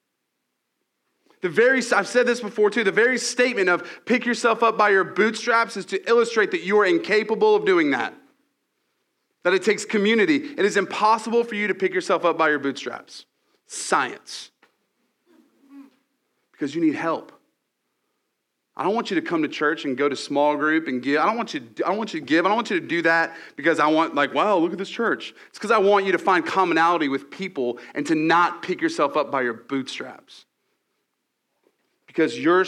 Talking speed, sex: 195 wpm, male